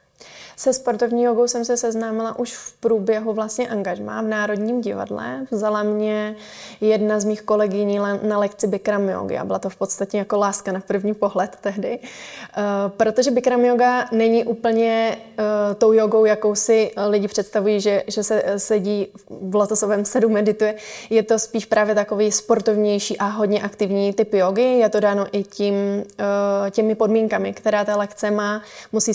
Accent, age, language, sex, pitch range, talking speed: native, 20-39, Czech, female, 200-220 Hz, 165 wpm